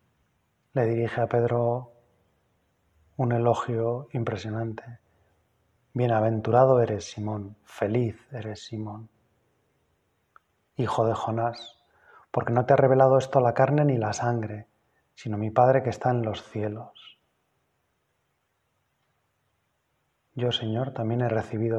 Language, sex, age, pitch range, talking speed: Spanish, male, 20-39, 110-130 Hz, 110 wpm